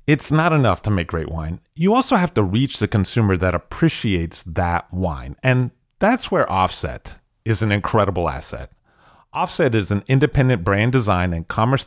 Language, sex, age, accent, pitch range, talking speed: English, male, 40-59, American, 95-130 Hz, 170 wpm